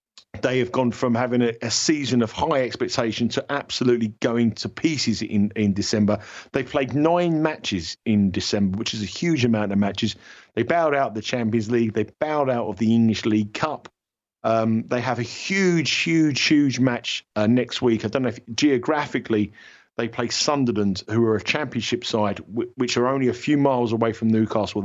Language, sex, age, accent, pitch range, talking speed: English, male, 50-69, British, 110-130 Hz, 190 wpm